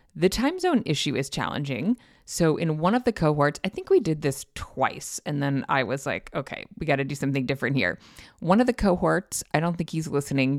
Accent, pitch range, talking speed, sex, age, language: American, 140-195 Hz, 225 wpm, female, 30-49, English